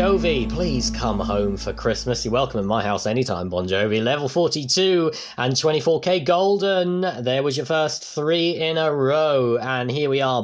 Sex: male